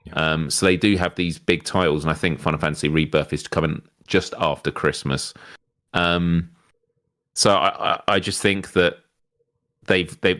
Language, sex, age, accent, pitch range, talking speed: English, male, 30-49, British, 80-95 Hz, 175 wpm